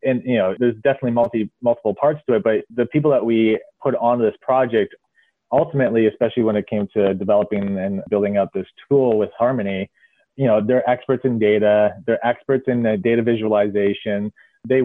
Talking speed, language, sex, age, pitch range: 185 wpm, English, male, 30-49, 105-125 Hz